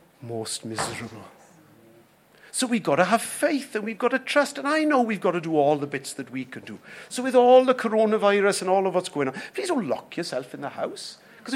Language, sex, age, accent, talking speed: English, male, 50-69, British, 240 wpm